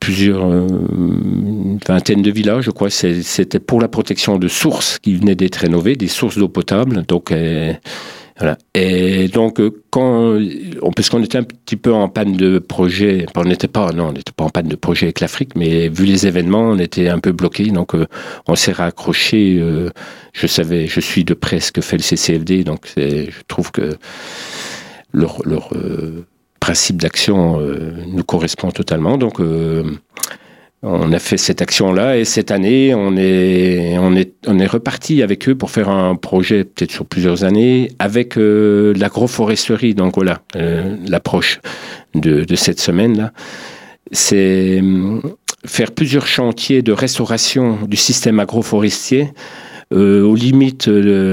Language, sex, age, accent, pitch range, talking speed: French, male, 50-69, French, 90-110 Hz, 165 wpm